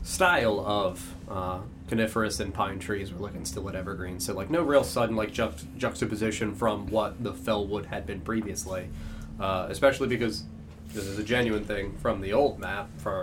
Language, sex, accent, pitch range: English, male, American, 85-115 Hz